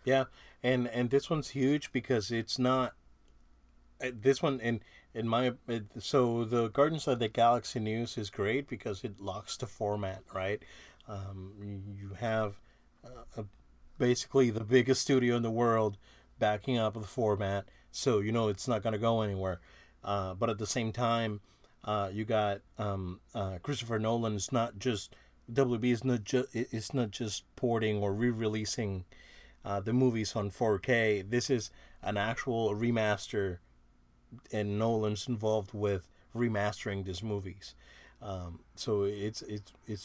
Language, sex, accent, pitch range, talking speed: English, male, American, 100-120 Hz, 150 wpm